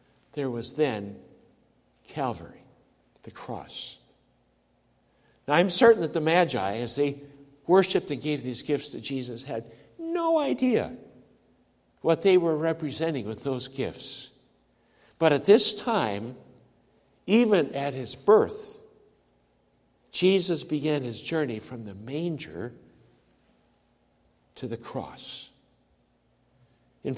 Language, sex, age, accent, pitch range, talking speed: English, male, 60-79, American, 120-165 Hz, 110 wpm